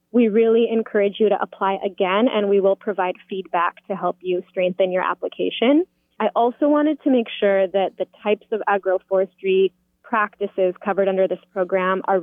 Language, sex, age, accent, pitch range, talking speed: English, female, 20-39, American, 185-220 Hz, 170 wpm